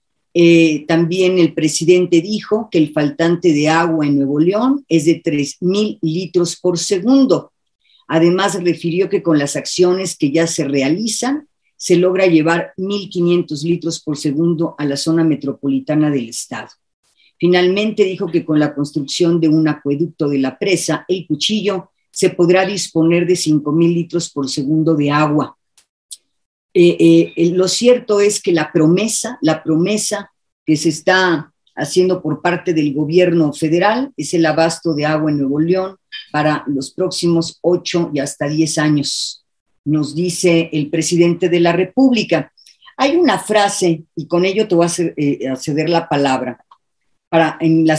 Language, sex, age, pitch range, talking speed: Spanish, female, 40-59, 150-185 Hz, 155 wpm